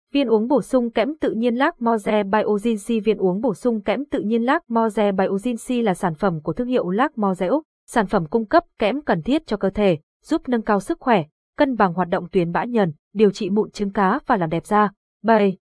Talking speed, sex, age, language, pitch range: 235 wpm, female, 20-39, Vietnamese, 190-240 Hz